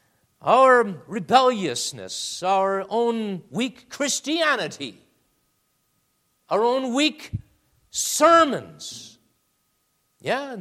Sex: male